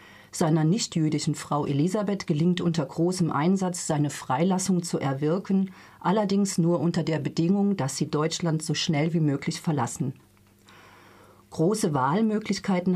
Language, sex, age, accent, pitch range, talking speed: German, female, 40-59, German, 150-185 Hz, 125 wpm